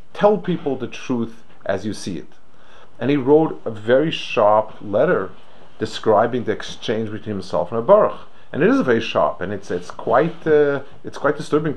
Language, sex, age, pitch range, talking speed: English, male, 40-59, 105-140 Hz, 185 wpm